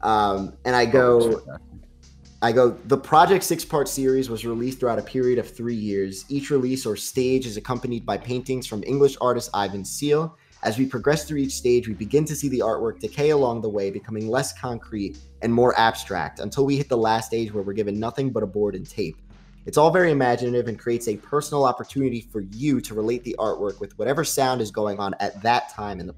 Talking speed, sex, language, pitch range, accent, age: 220 wpm, male, English, 105-135 Hz, American, 20-39